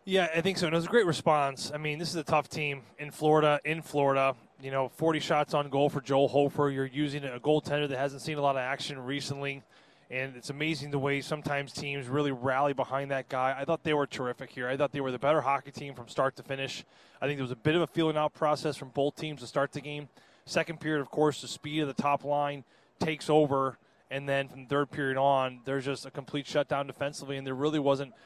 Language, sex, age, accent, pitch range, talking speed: English, male, 20-39, American, 135-150 Hz, 250 wpm